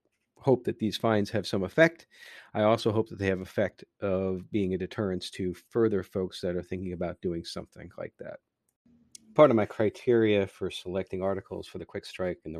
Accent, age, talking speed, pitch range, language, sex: American, 40-59, 200 wpm, 100-125 Hz, English, male